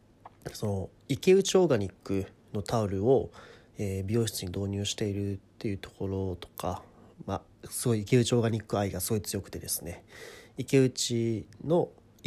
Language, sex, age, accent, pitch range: Japanese, male, 30-49, native, 95-125 Hz